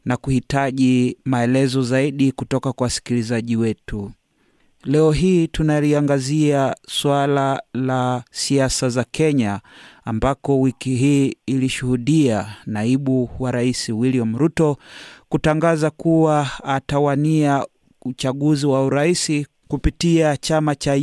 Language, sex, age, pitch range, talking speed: Swahili, male, 30-49, 130-150 Hz, 95 wpm